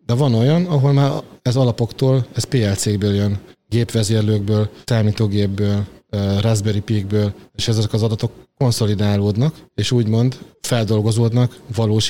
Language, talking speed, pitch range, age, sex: Hungarian, 115 wpm, 105-120 Hz, 30-49, male